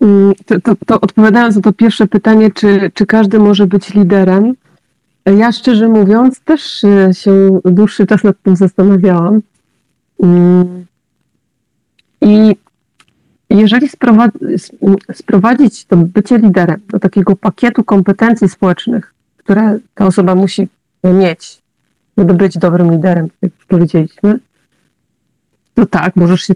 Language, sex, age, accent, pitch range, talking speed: Polish, female, 40-59, native, 175-205 Hz, 115 wpm